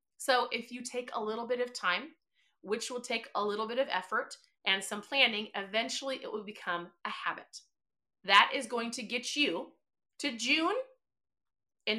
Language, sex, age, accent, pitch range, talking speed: English, female, 30-49, American, 225-285 Hz, 175 wpm